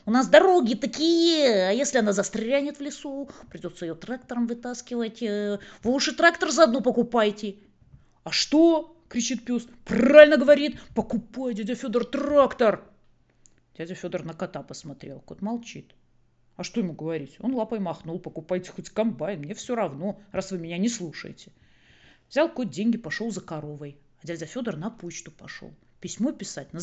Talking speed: 155 wpm